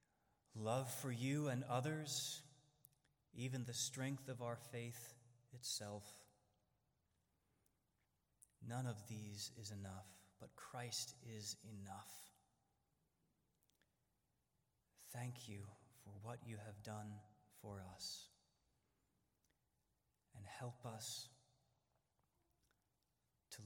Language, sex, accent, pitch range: English, male, American, 100-125 Hz